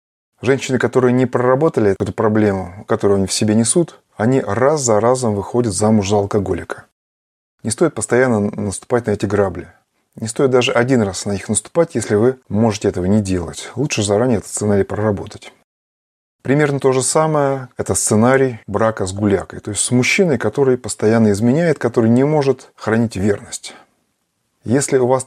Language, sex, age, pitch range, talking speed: Russian, male, 20-39, 100-125 Hz, 165 wpm